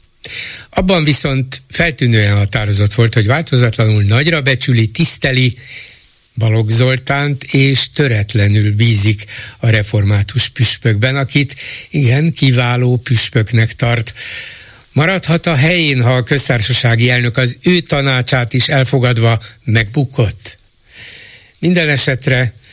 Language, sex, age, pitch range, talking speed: Hungarian, male, 60-79, 110-135 Hz, 100 wpm